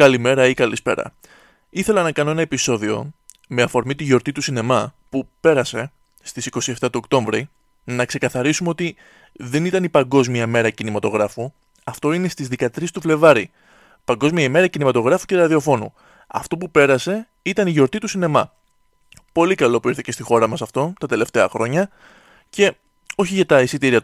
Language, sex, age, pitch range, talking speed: Greek, male, 20-39, 125-170 Hz, 160 wpm